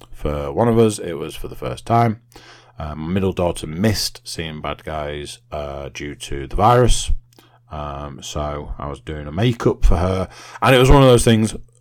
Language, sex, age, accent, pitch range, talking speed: English, male, 30-49, British, 80-120 Hz, 200 wpm